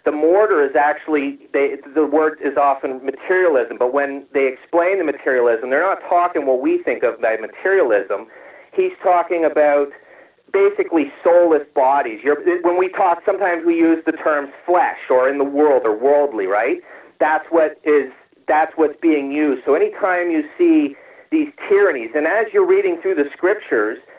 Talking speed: 170 wpm